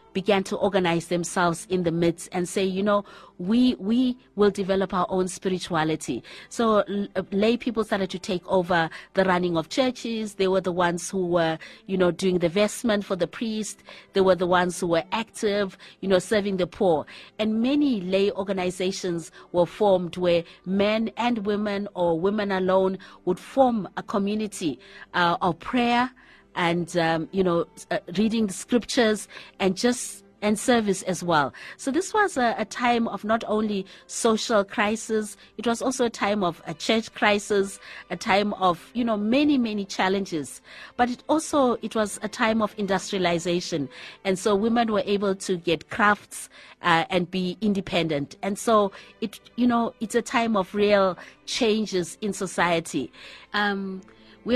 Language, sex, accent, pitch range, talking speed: English, female, South African, 180-220 Hz, 170 wpm